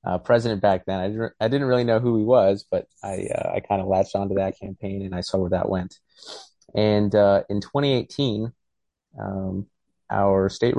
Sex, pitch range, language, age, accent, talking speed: male, 95-110 Hz, English, 30-49, American, 200 wpm